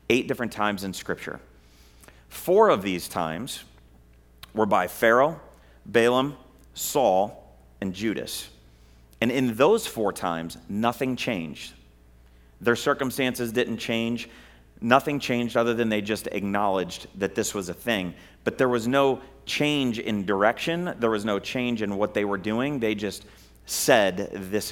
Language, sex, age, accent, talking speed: English, male, 40-59, American, 145 wpm